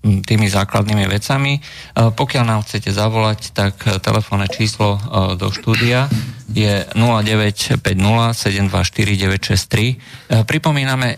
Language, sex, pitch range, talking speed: Slovak, male, 100-120 Hz, 90 wpm